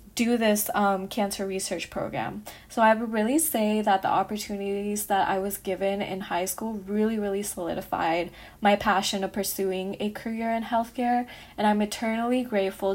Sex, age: female, 20-39